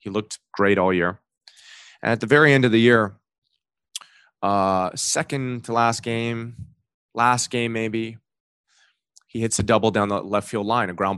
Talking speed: 170 wpm